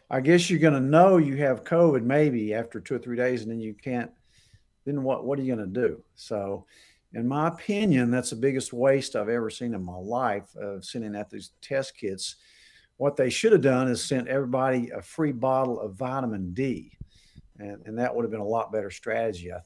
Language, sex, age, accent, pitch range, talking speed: English, male, 50-69, American, 105-130 Hz, 220 wpm